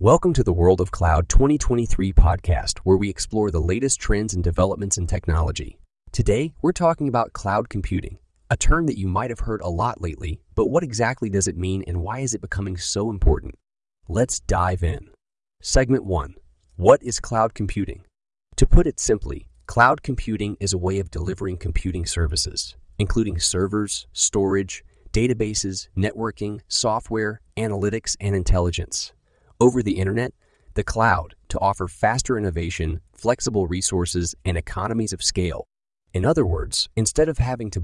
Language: English